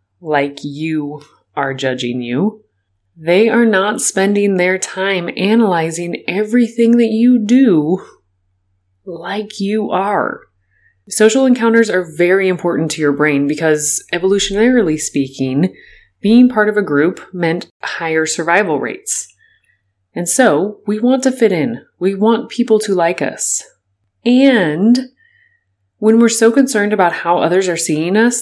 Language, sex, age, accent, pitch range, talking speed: English, female, 30-49, American, 150-215 Hz, 135 wpm